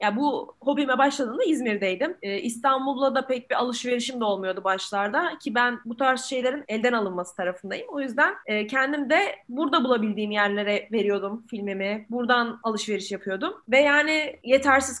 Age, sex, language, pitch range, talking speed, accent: 10-29, female, Turkish, 210-300 Hz, 150 wpm, native